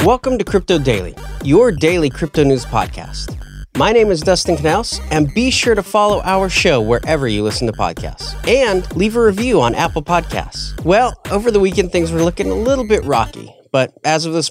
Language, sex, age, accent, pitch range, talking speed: English, male, 30-49, American, 125-185 Hz, 200 wpm